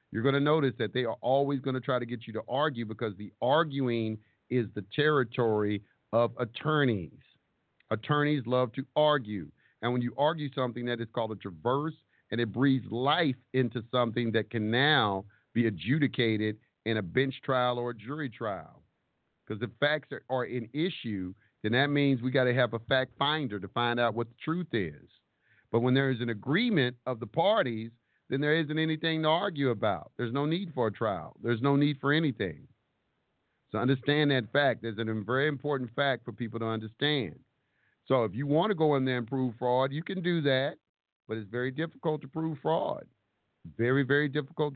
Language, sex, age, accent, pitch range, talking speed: English, male, 50-69, American, 115-145 Hz, 195 wpm